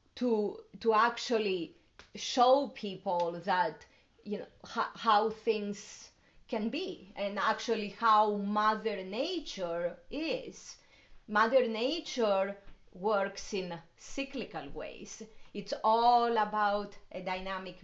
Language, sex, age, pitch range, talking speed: English, female, 30-49, 195-240 Hz, 100 wpm